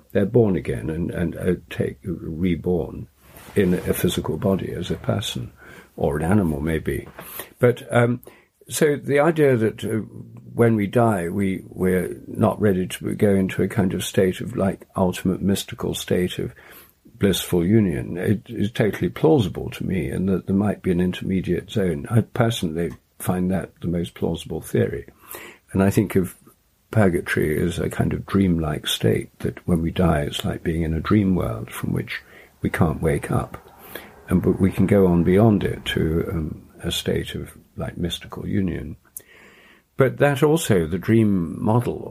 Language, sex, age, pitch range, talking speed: English, male, 60-79, 85-110 Hz, 165 wpm